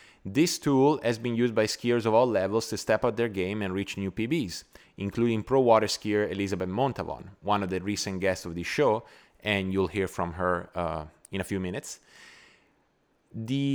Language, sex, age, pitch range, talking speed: English, male, 20-39, 95-125 Hz, 190 wpm